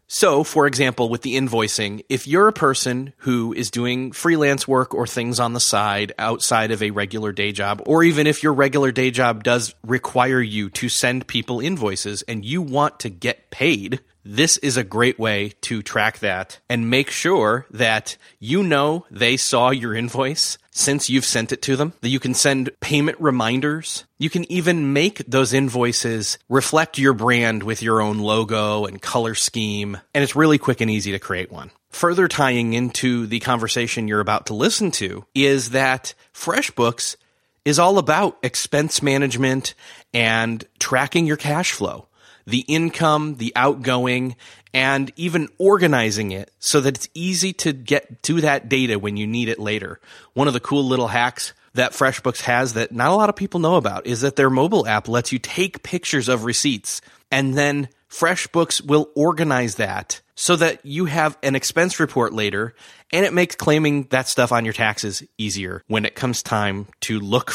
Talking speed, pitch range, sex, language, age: 180 wpm, 115-145 Hz, male, English, 30-49